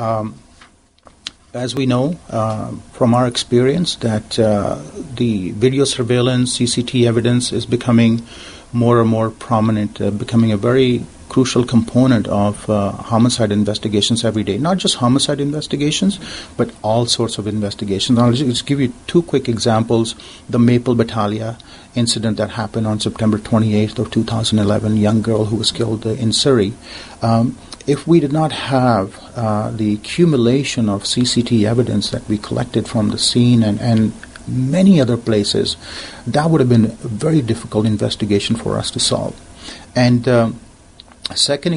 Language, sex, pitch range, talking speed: English, male, 110-125 Hz, 155 wpm